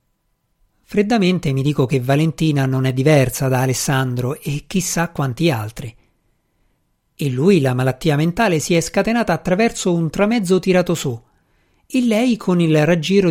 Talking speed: 145 wpm